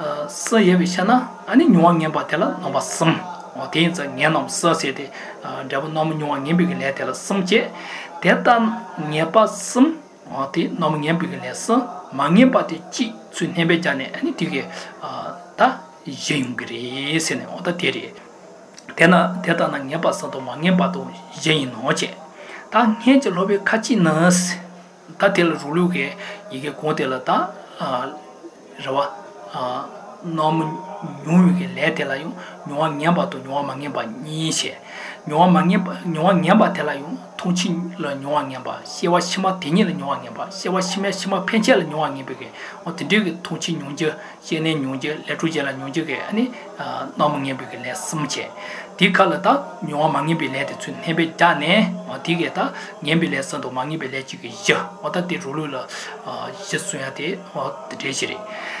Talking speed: 55 wpm